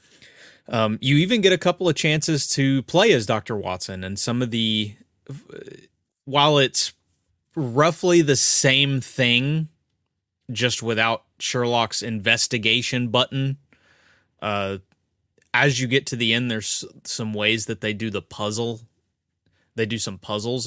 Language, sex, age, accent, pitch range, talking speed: English, male, 20-39, American, 100-120 Hz, 135 wpm